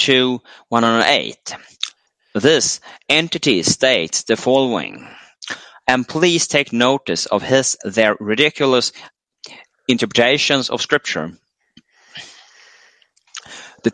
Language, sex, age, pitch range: Chinese, male, 30-49, 115-145 Hz